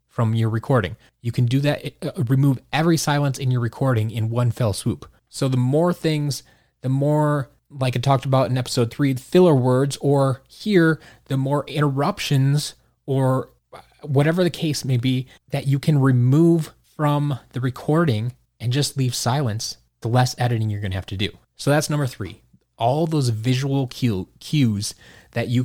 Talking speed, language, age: 170 wpm, English, 20-39